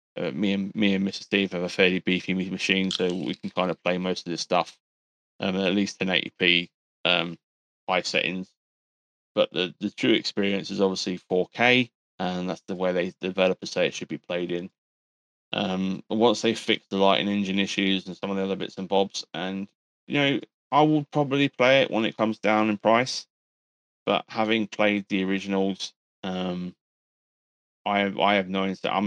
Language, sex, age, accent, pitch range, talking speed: English, male, 20-39, British, 90-105 Hz, 190 wpm